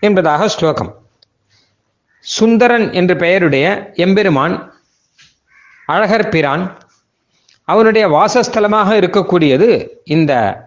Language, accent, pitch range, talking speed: Tamil, native, 145-210 Hz, 60 wpm